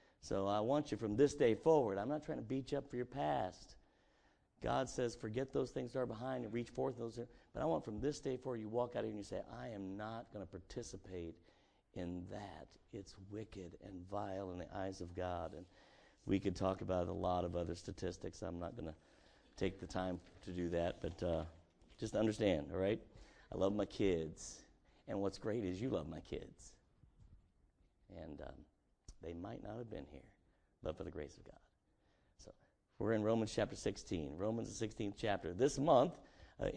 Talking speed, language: 205 wpm, English